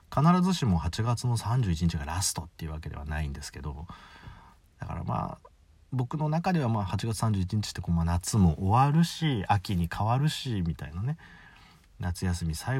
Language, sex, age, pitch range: Japanese, male, 40-59, 85-115 Hz